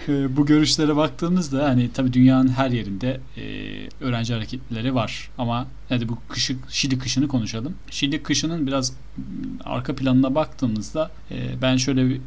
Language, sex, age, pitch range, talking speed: Turkish, male, 40-59, 115-135 Hz, 135 wpm